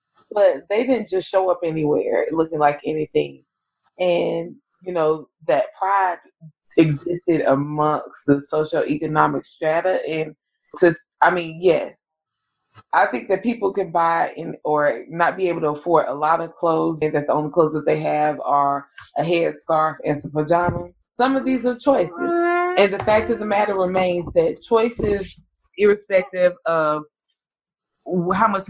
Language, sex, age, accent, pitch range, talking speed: English, female, 20-39, American, 150-190 Hz, 155 wpm